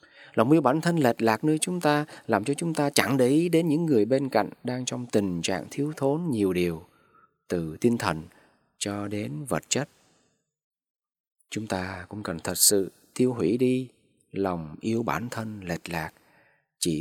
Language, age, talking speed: Vietnamese, 20-39, 185 wpm